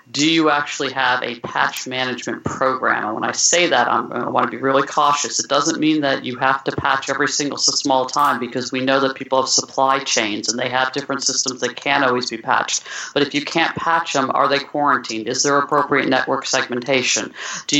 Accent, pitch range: American, 125-145 Hz